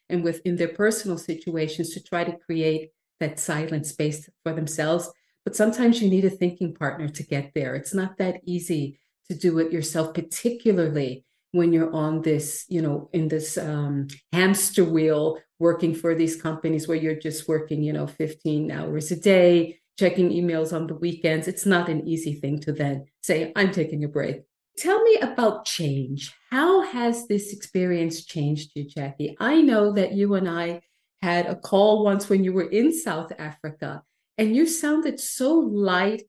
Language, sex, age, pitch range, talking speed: English, female, 40-59, 160-200 Hz, 175 wpm